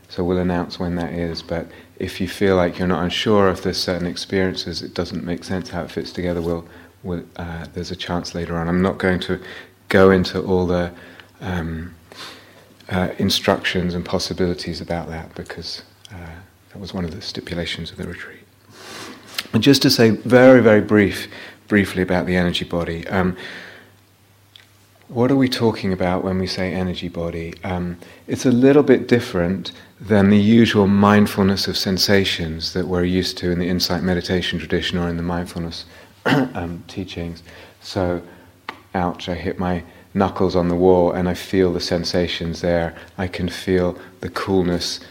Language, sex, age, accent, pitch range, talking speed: English, male, 30-49, British, 85-95 Hz, 175 wpm